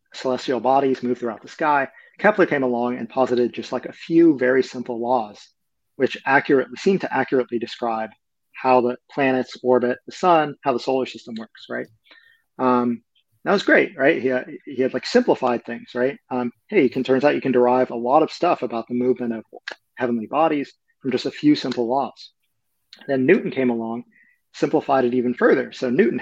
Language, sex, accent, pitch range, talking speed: English, male, American, 120-135 Hz, 190 wpm